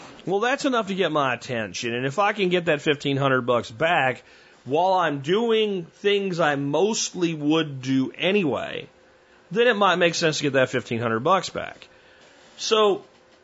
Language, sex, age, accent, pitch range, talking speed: English, male, 40-59, American, 135-185 Hz, 165 wpm